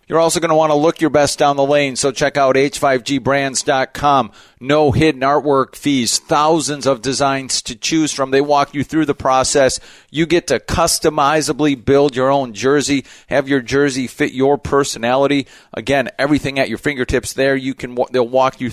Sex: male